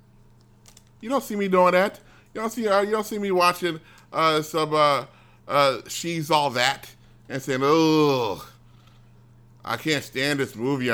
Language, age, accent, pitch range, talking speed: English, 30-49, American, 115-160 Hz, 160 wpm